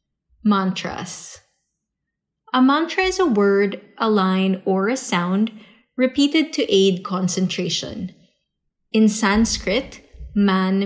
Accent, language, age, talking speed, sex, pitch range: Filipino, English, 20-39, 100 wpm, female, 185-245 Hz